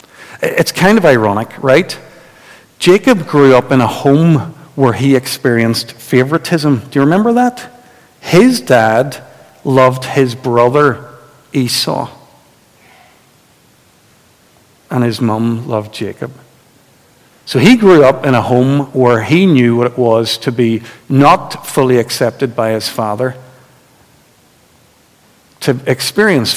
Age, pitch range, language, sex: 50-69, 120-150 Hz, English, male